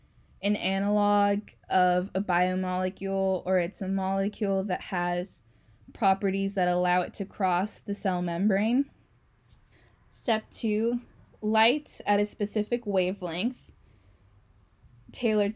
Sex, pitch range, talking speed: female, 180-220 Hz, 110 wpm